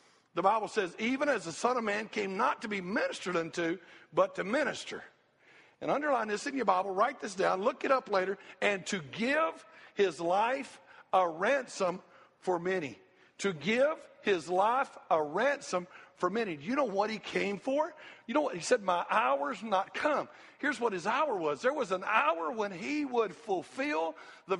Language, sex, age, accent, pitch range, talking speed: English, male, 60-79, American, 185-260 Hz, 190 wpm